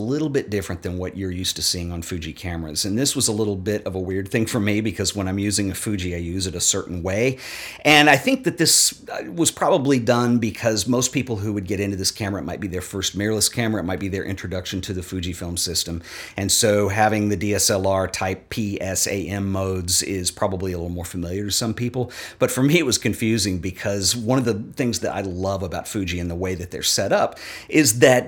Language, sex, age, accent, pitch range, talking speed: English, male, 50-69, American, 95-110 Hz, 240 wpm